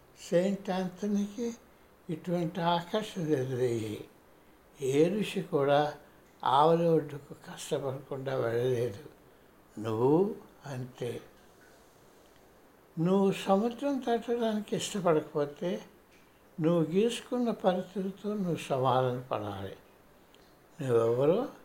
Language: Telugu